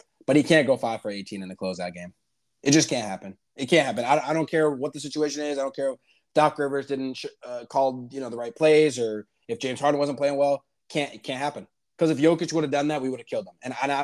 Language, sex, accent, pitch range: English, male, American, 120-155 Hz